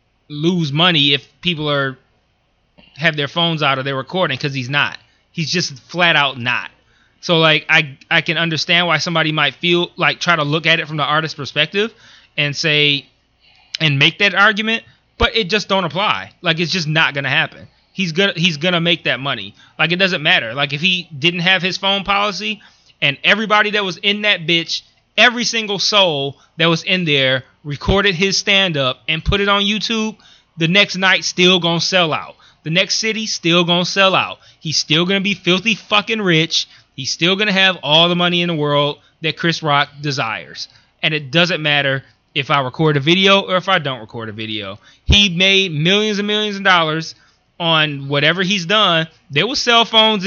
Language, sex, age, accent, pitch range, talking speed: English, male, 20-39, American, 145-195 Hz, 195 wpm